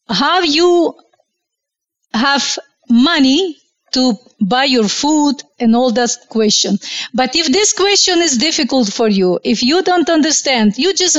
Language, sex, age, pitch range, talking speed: English, female, 40-59, 225-310 Hz, 140 wpm